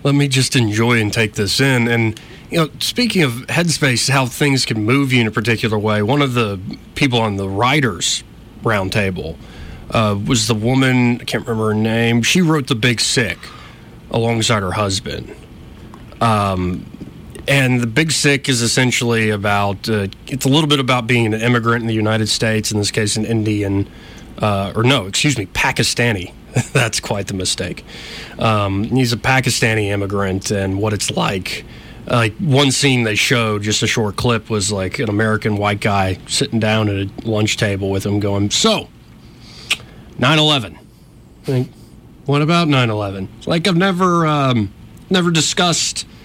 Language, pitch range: English, 105-130 Hz